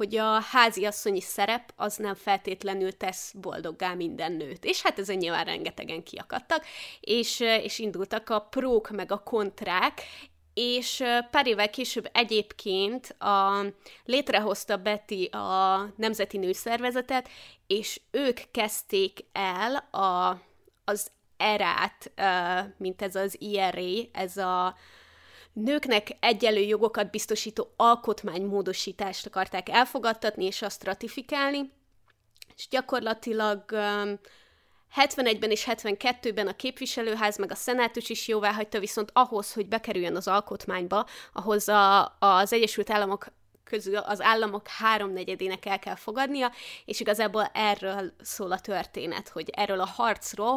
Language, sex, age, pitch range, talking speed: Hungarian, female, 20-39, 195-230 Hz, 120 wpm